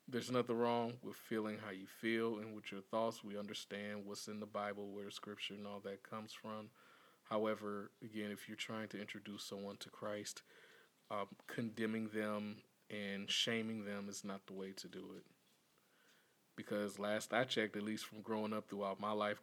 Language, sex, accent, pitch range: English, male, American, 105-120 Hz